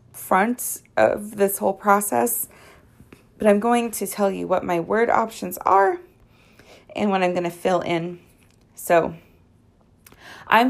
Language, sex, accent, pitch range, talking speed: English, female, American, 125-205 Hz, 140 wpm